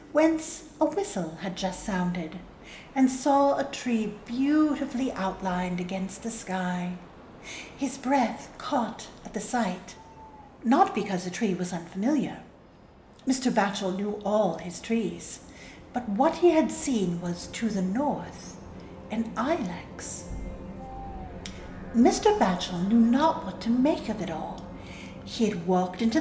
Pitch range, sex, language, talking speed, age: 190-270 Hz, female, English, 135 wpm, 60-79